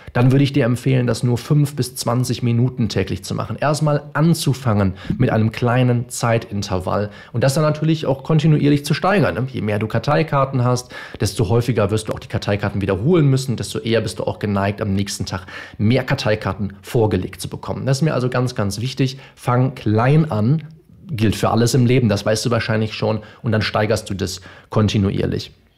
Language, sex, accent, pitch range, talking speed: German, male, German, 105-135 Hz, 190 wpm